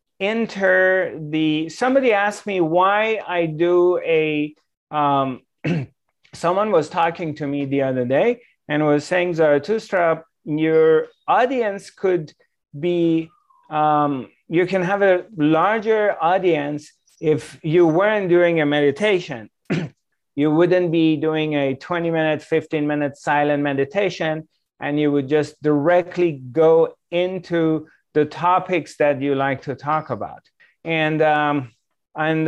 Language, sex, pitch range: English, male, 150-180 Hz